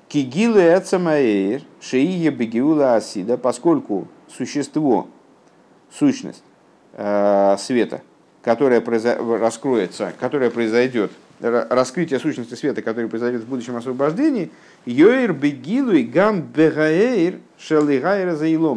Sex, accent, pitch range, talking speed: male, native, 120-170 Hz, 45 wpm